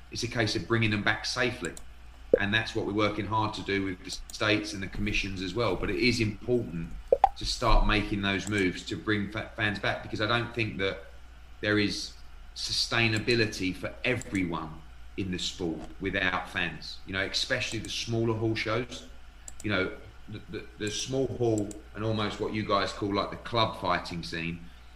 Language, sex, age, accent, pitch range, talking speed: English, male, 30-49, British, 90-115 Hz, 185 wpm